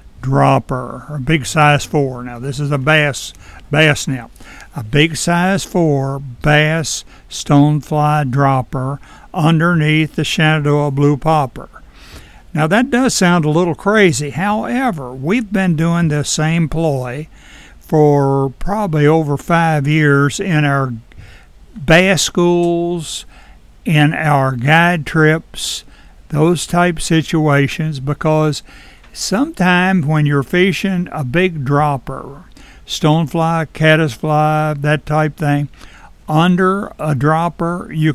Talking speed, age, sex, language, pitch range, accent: 110 wpm, 60-79, male, English, 140-170 Hz, American